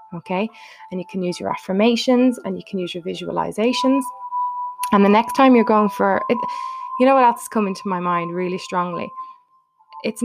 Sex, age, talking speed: female, 20-39, 185 wpm